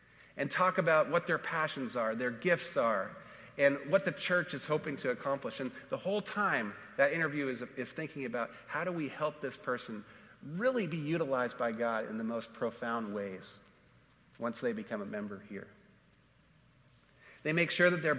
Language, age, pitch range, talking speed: English, 40-59, 130-175 Hz, 180 wpm